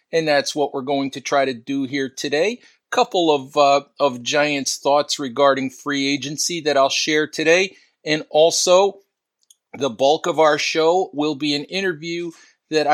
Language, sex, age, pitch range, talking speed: English, male, 40-59, 135-155 Hz, 160 wpm